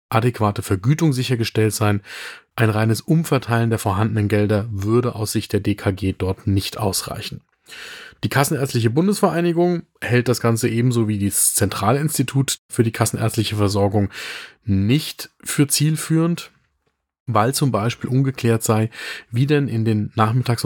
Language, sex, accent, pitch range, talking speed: German, male, German, 105-135 Hz, 130 wpm